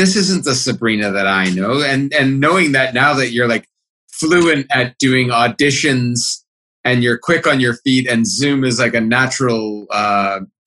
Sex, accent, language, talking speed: male, American, English, 180 wpm